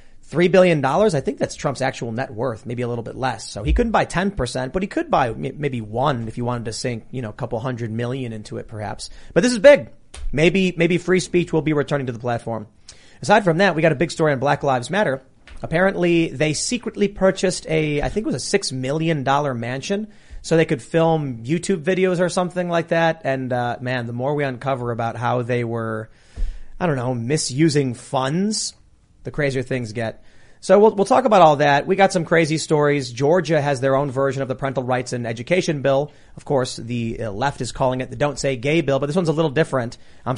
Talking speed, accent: 225 wpm, American